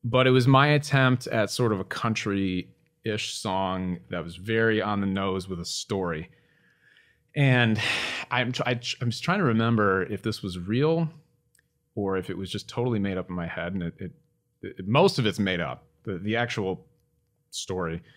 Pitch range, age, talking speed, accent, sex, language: 95-125 Hz, 30-49, 190 wpm, American, male, English